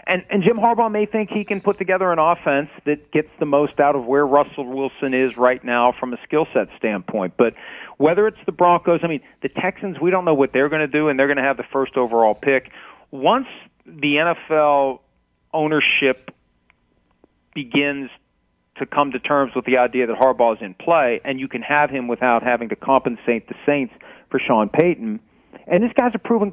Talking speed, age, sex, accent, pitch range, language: 205 wpm, 40-59, male, American, 130-160 Hz, English